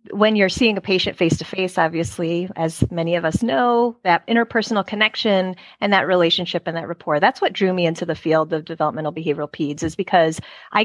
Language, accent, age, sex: English, American, 30-49, female